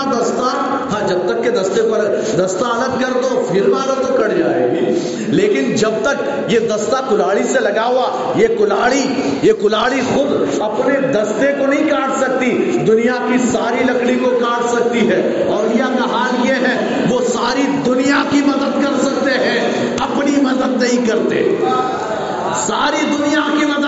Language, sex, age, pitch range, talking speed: Urdu, male, 50-69, 230-275 Hz, 45 wpm